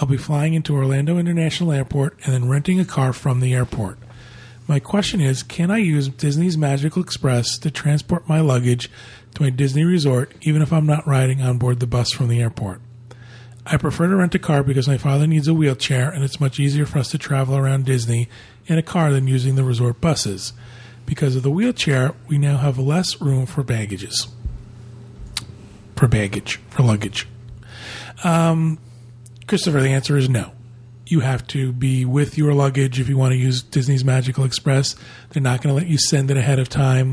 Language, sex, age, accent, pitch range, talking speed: English, male, 40-59, American, 120-150 Hz, 195 wpm